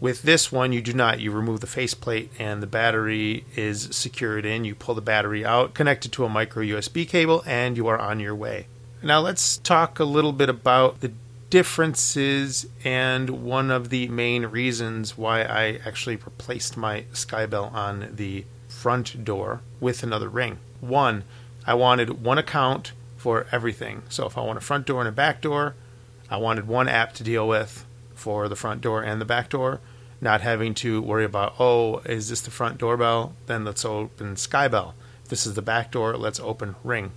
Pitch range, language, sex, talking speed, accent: 115-130 Hz, English, male, 190 wpm, American